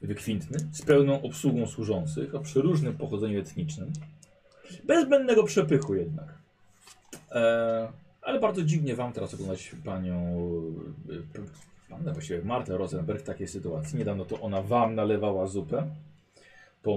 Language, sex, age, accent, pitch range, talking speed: Polish, male, 30-49, native, 95-150 Hz, 120 wpm